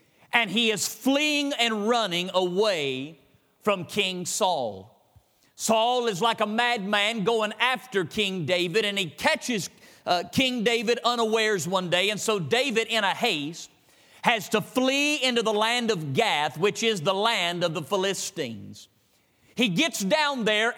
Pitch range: 195-255 Hz